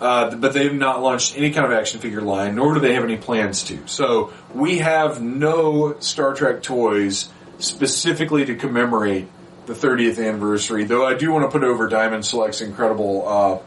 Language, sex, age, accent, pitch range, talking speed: English, male, 30-49, American, 100-130 Hz, 190 wpm